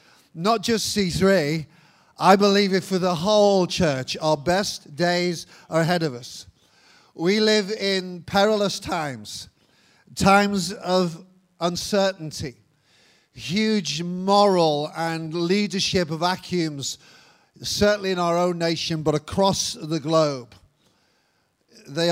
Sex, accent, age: male, British, 50-69